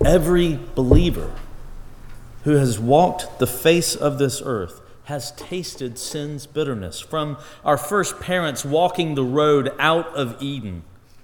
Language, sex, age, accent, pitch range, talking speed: English, male, 40-59, American, 120-155 Hz, 130 wpm